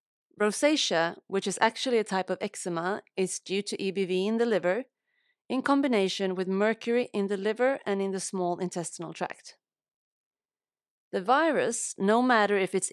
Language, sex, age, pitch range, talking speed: English, female, 30-49, 180-225 Hz, 160 wpm